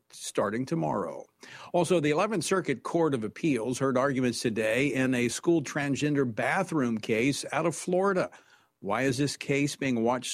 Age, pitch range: 50-69, 135-180 Hz